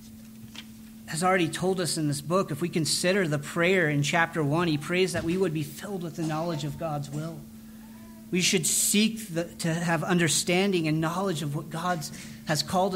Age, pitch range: 40-59, 145-190 Hz